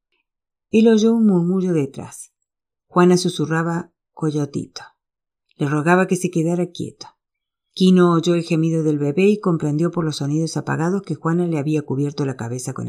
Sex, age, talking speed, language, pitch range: female, 50-69, 160 wpm, Spanish, 150-200 Hz